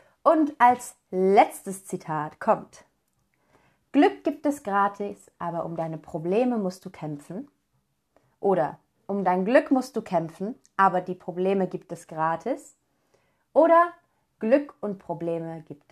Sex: female